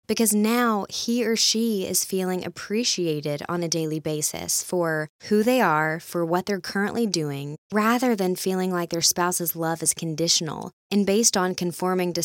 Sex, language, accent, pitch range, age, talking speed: female, English, American, 165-215 Hz, 20-39, 170 wpm